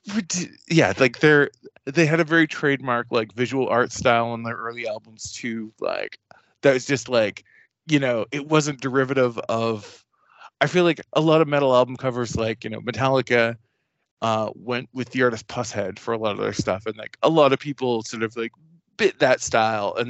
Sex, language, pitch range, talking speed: male, English, 115-140 Hz, 200 wpm